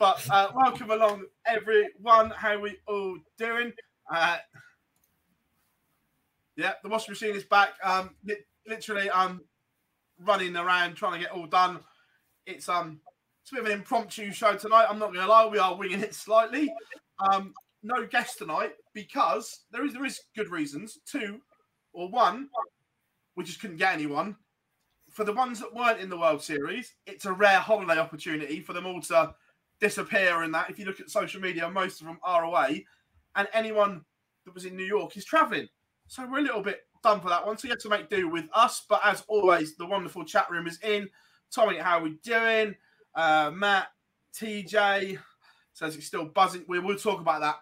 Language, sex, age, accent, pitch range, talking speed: English, male, 20-39, British, 170-220 Hz, 185 wpm